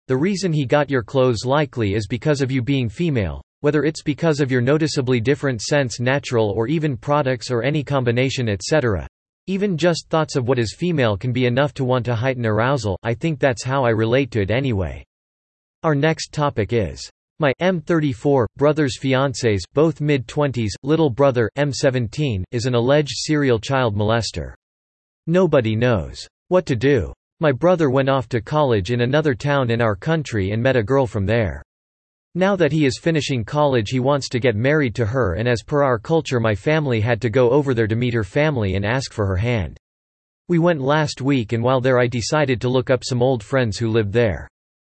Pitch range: 115-145 Hz